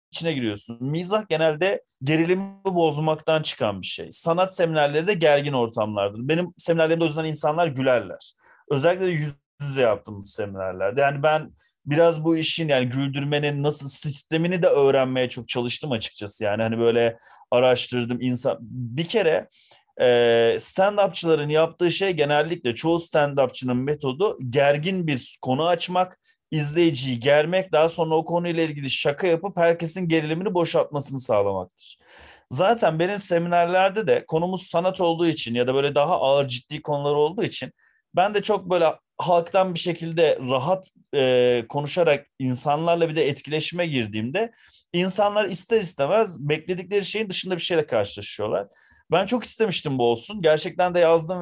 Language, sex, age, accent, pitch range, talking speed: Turkish, male, 30-49, native, 135-175 Hz, 140 wpm